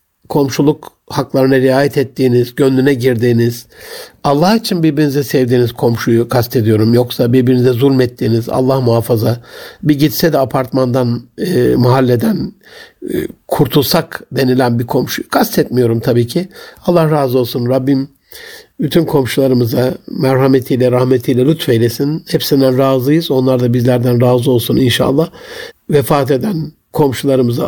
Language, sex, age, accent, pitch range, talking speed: Turkish, male, 60-79, native, 130-175 Hz, 110 wpm